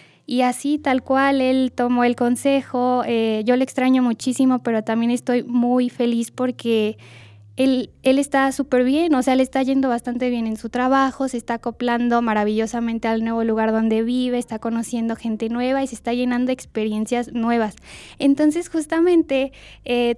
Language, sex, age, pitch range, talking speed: Spanish, female, 10-29, 230-270 Hz, 170 wpm